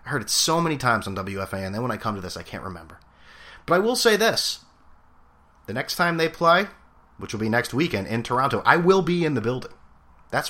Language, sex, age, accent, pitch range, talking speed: English, male, 30-49, American, 95-160 Hz, 240 wpm